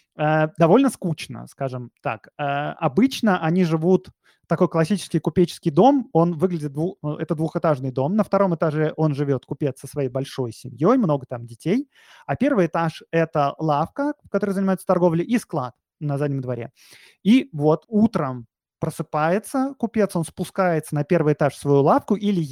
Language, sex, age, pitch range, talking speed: Russian, male, 20-39, 140-185 Hz, 155 wpm